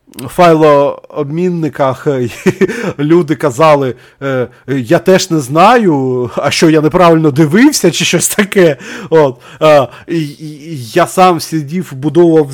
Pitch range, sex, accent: 140-175 Hz, male, native